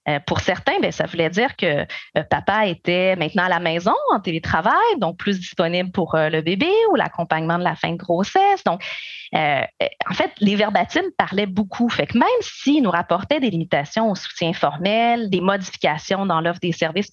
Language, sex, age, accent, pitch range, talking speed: French, female, 30-49, Canadian, 170-230 Hz, 200 wpm